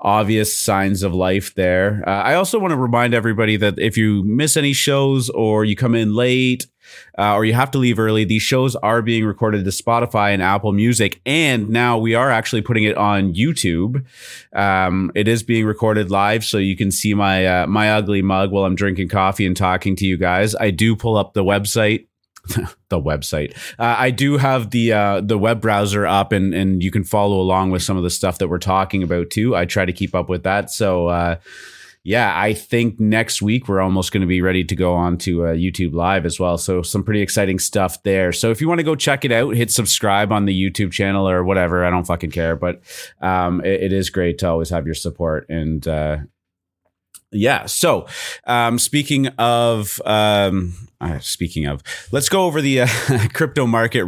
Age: 30-49